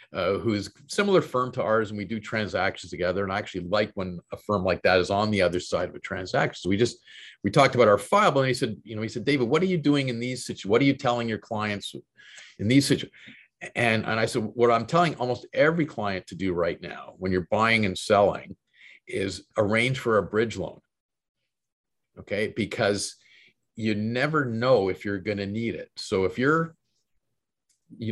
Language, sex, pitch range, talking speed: English, male, 100-130 Hz, 215 wpm